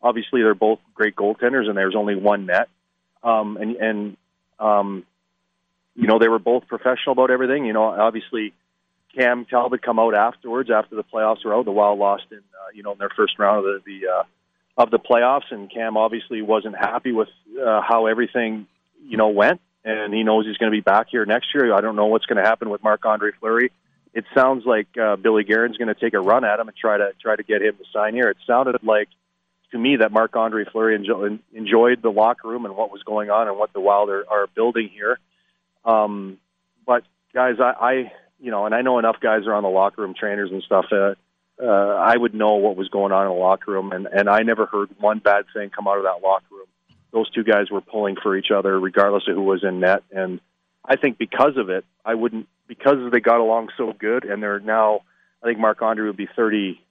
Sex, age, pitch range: male, 40-59, 100-115 Hz